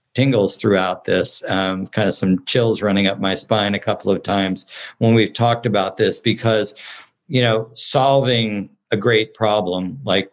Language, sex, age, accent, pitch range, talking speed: English, male, 50-69, American, 95-115 Hz, 170 wpm